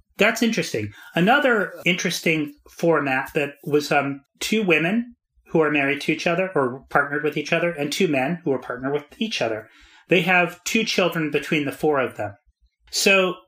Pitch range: 145-180 Hz